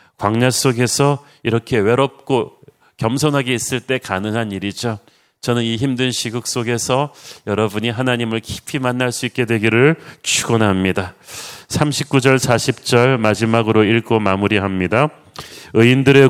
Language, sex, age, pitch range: Korean, male, 40-59, 115-150 Hz